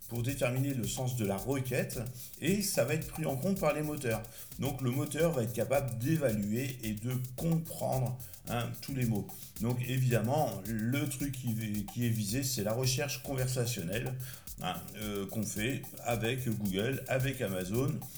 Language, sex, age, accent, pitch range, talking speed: French, male, 50-69, French, 115-145 Hz, 165 wpm